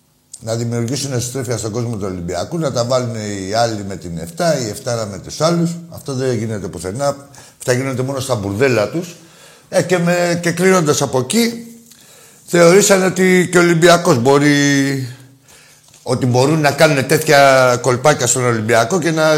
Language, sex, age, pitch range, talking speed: Greek, male, 60-79, 115-145 Hz, 160 wpm